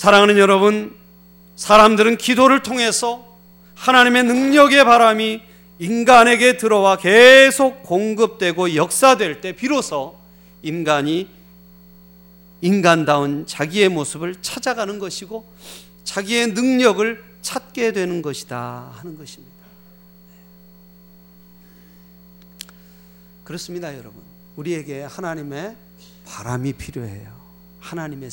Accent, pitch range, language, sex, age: native, 125-200 Hz, Korean, male, 40-59